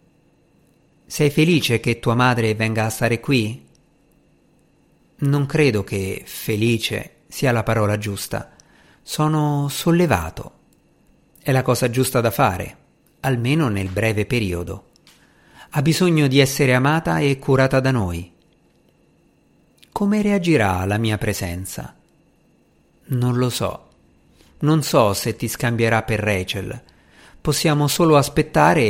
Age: 50-69